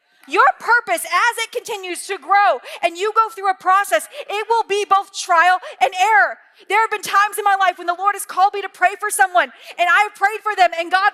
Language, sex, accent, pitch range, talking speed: English, female, American, 300-390 Hz, 240 wpm